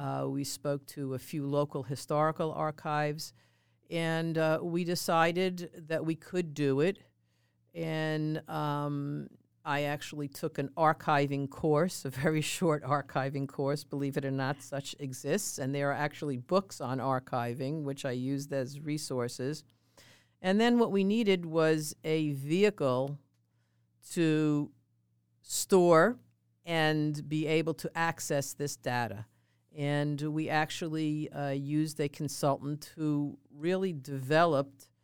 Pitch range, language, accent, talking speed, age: 135-155 Hz, English, American, 130 wpm, 50-69